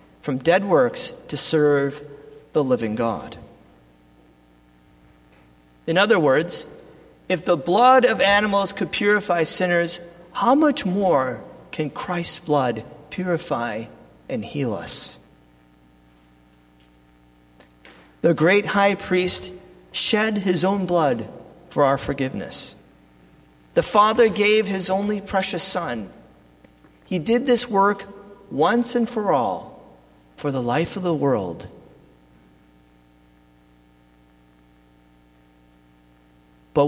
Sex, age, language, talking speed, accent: male, 40-59, English, 100 wpm, American